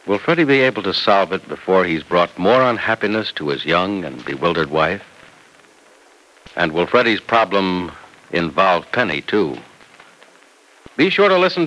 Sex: male